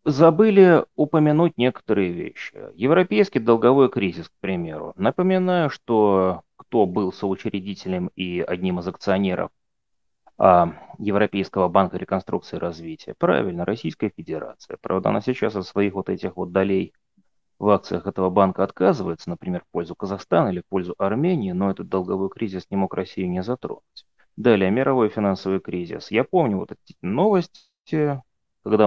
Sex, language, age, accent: male, Russian, 30-49, native